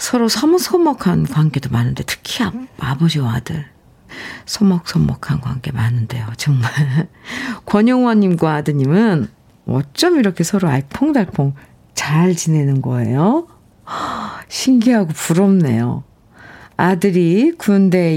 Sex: female